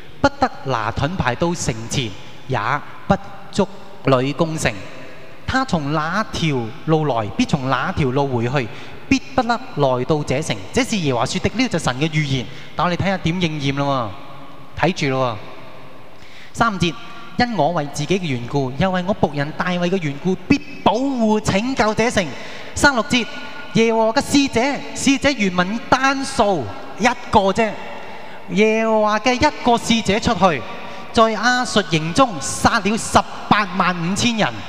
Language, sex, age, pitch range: Chinese, male, 20-39, 135-210 Hz